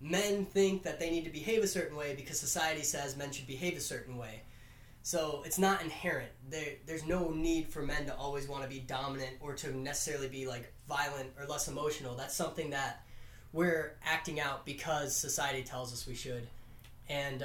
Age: 10-29